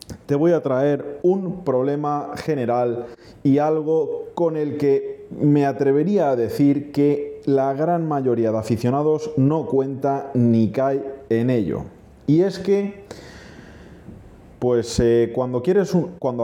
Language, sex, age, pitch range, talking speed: Spanish, male, 30-49, 115-150 Hz, 135 wpm